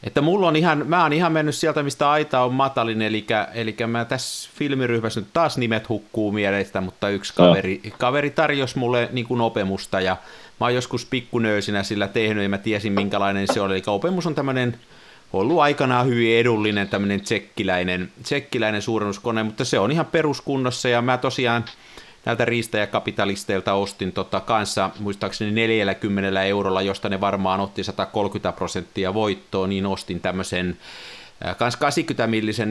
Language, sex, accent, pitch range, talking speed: Finnish, male, native, 100-125 Hz, 155 wpm